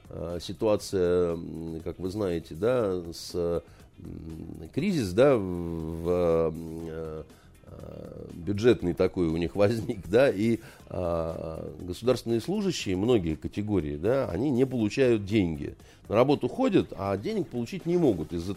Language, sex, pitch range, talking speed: Russian, male, 95-145 Hz, 95 wpm